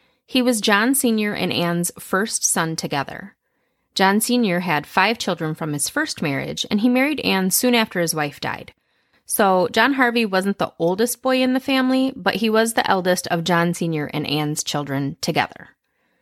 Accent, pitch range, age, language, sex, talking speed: American, 165-235 Hz, 30-49, English, female, 180 wpm